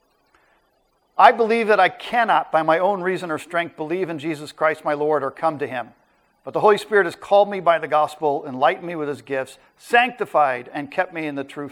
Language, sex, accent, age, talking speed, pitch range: English, male, American, 50-69, 220 wpm, 150-190 Hz